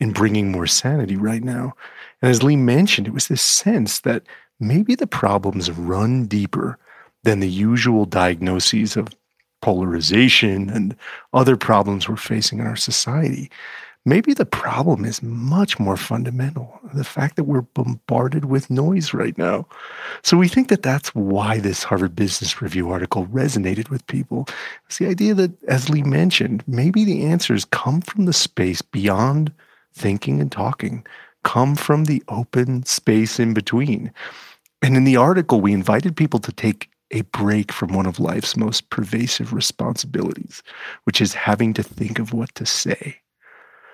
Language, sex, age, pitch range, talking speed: English, male, 40-59, 105-145 Hz, 160 wpm